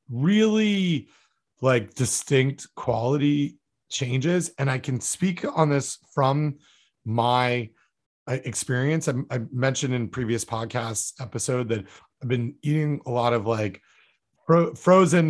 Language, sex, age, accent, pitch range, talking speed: English, male, 30-49, American, 115-145 Hz, 115 wpm